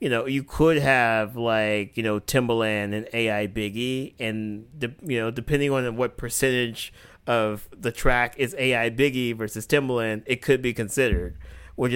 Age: 30-49